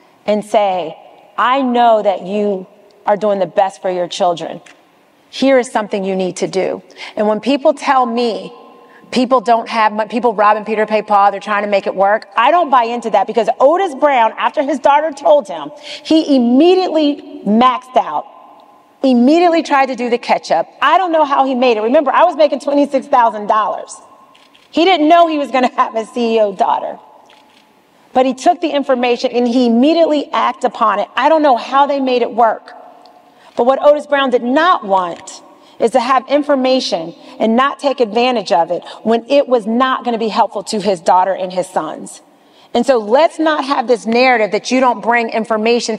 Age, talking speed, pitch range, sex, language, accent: 40-59, 190 wpm, 215-280 Hz, female, English, American